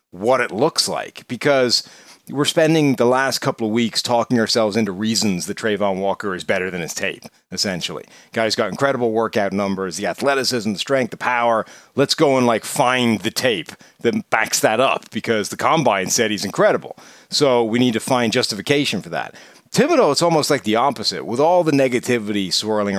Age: 40-59